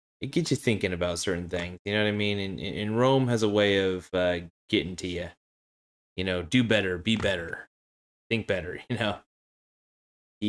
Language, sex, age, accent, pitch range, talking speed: English, male, 20-39, American, 90-105 Hz, 190 wpm